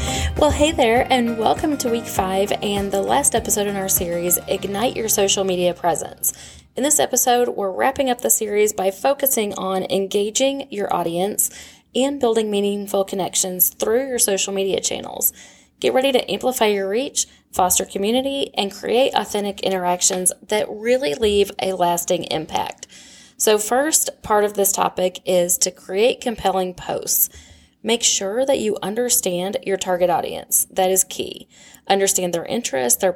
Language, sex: English, female